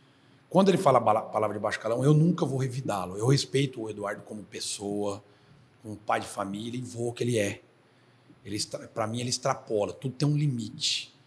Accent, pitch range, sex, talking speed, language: Brazilian, 105-140 Hz, male, 195 wpm, Portuguese